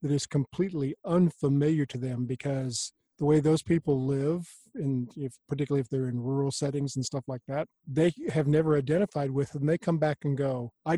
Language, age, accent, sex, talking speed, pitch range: English, 50-69, American, male, 195 wpm, 130-150 Hz